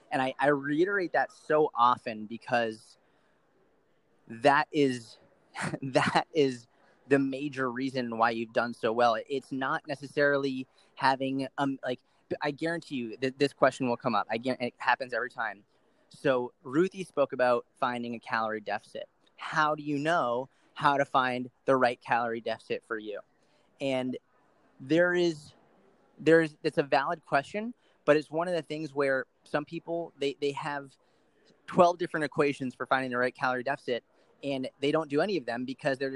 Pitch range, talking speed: 125-150 Hz, 170 wpm